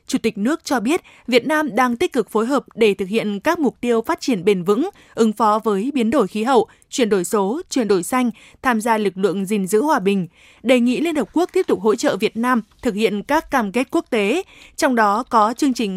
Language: Vietnamese